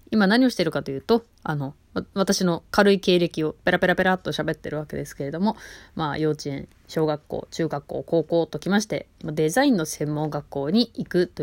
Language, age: Japanese, 20-39